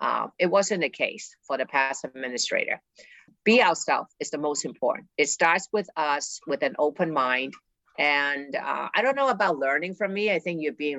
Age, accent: 50-69, American